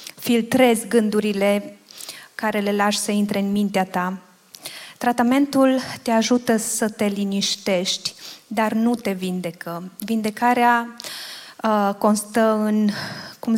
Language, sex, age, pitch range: Romanian, female, 20-39, 195-230 Hz